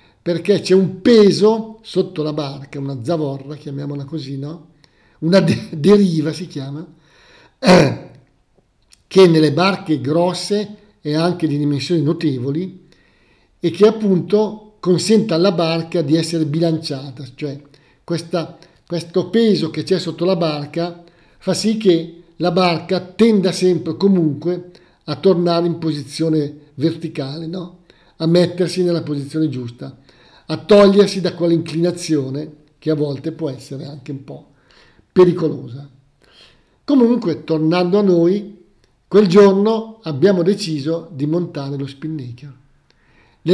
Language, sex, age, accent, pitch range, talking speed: Italian, male, 50-69, native, 150-185 Hz, 120 wpm